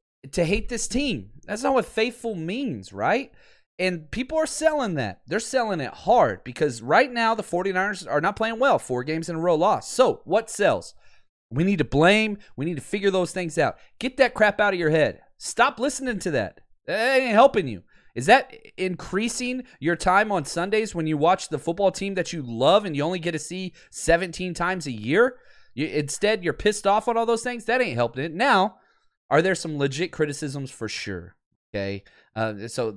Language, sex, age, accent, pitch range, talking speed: English, male, 30-49, American, 150-220 Hz, 205 wpm